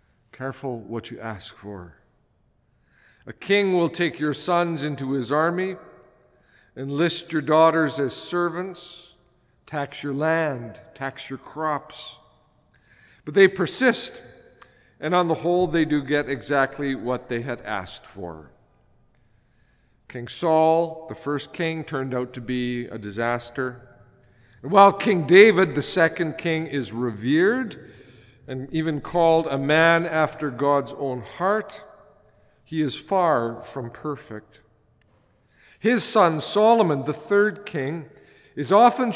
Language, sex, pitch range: English, male, 125-175 Hz